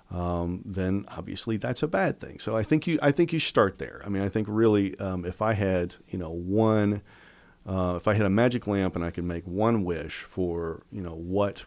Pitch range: 85-105 Hz